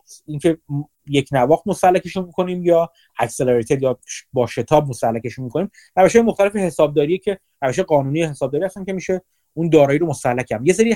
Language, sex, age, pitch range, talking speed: Persian, male, 30-49, 135-185 Hz, 165 wpm